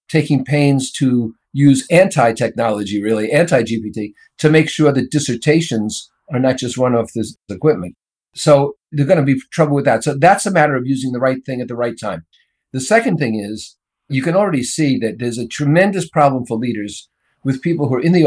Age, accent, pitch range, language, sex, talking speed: 50-69, American, 115-150 Hz, English, male, 195 wpm